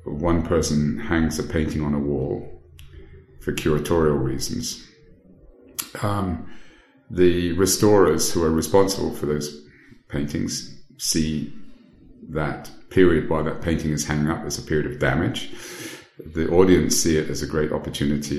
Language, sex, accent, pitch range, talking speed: English, male, British, 75-85 Hz, 135 wpm